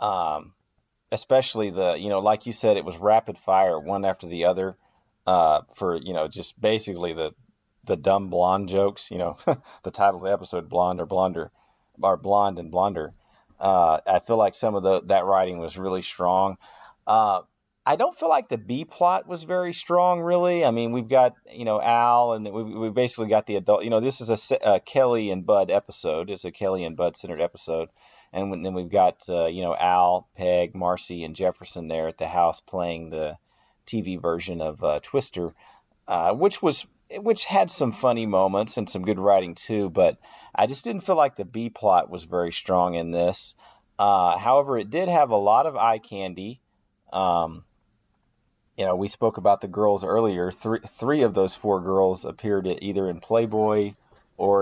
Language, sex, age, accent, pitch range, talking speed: English, male, 40-59, American, 90-115 Hz, 195 wpm